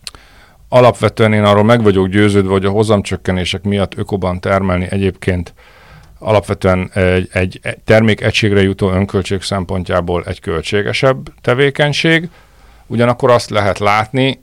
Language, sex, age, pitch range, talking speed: Hungarian, male, 50-69, 90-120 Hz, 110 wpm